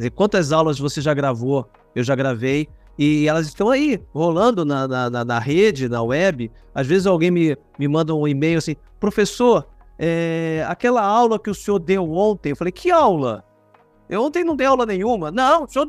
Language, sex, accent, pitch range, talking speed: Portuguese, male, Brazilian, 140-215 Hz, 185 wpm